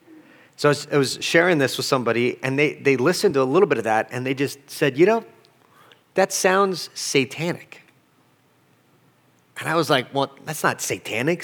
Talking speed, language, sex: 180 wpm, English, male